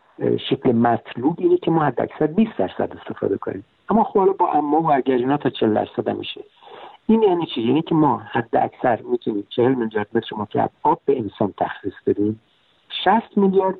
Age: 60-79